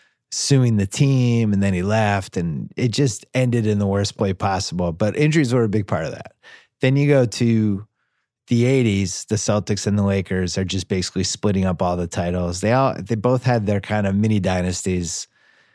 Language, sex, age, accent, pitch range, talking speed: English, male, 30-49, American, 95-130 Hz, 200 wpm